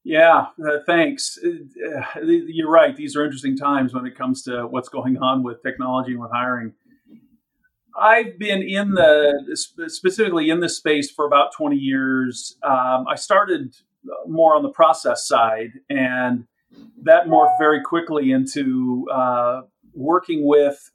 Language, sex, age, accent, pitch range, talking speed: English, male, 50-69, American, 130-205 Hz, 145 wpm